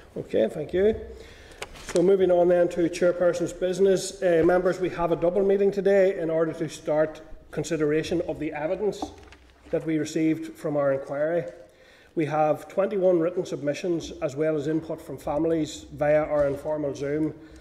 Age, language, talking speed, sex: 30-49, English, 160 wpm, male